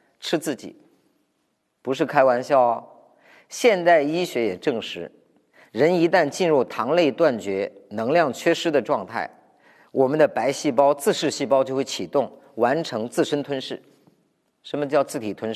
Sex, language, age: male, Chinese, 50-69